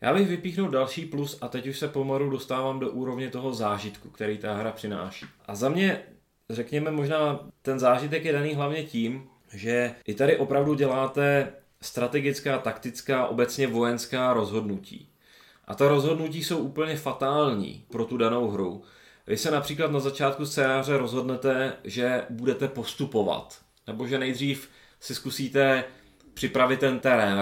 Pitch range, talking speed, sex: 115-145 Hz, 150 wpm, male